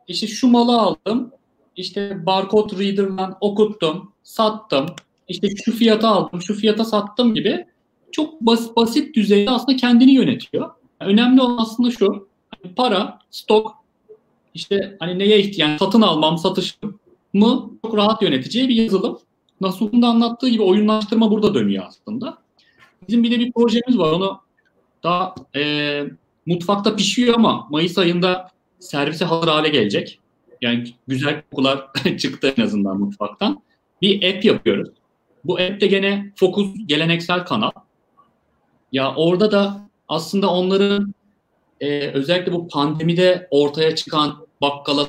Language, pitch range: Turkish, 150-220 Hz